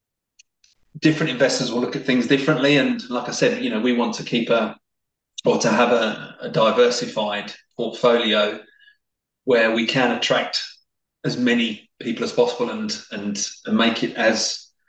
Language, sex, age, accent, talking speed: English, male, 20-39, British, 160 wpm